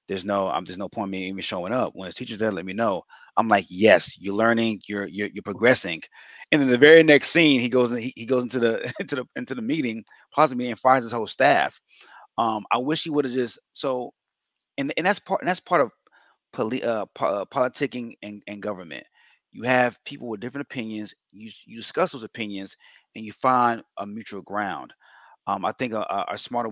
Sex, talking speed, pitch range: male, 220 wpm, 105-135 Hz